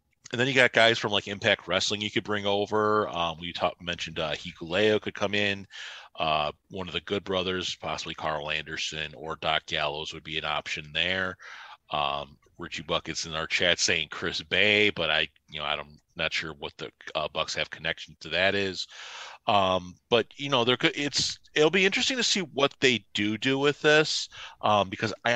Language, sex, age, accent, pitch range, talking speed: English, male, 40-59, American, 85-110 Hz, 200 wpm